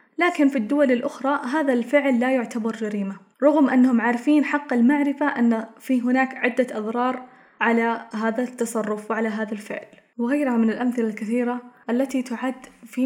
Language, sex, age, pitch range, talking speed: Arabic, female, 10-29, 225-265 Hz, 145 wpm